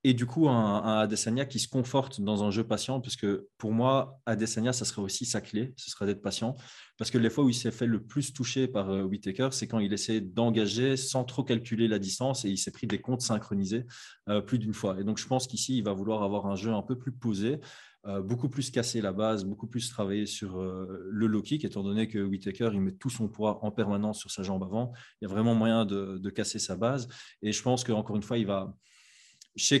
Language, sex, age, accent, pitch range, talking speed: French, male, 20-39, French, 100-120 Hz, 255 wpm